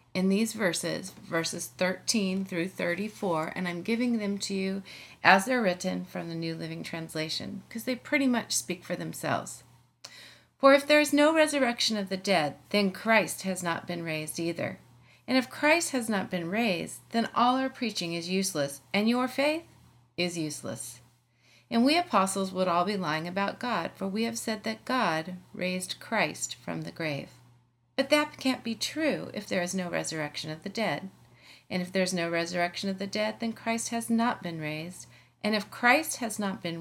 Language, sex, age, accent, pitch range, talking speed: English, female, 40-59, American, 165-230 Hz, 190 wpm